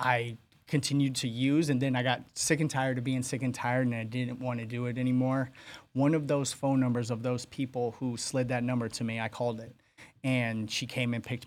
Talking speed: 240 wpm